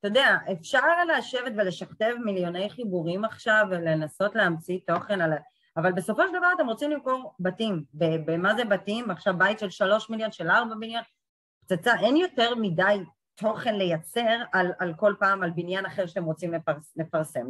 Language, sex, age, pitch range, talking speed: Hebrew, female, 30-49, 170-235 Hz, 160 wpm